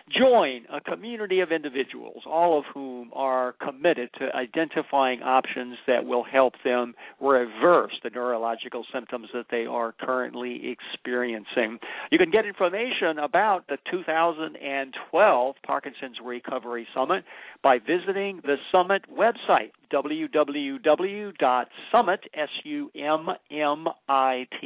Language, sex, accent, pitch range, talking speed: English, male, American, 135-185 Hz, 100 wpm